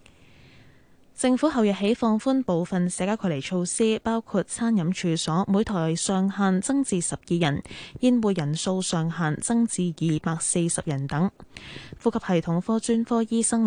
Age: 10-29